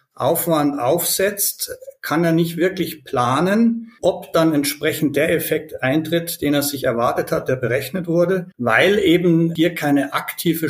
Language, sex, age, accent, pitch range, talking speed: German, male, 60-79, German, 140-185 Hz, 145 wpm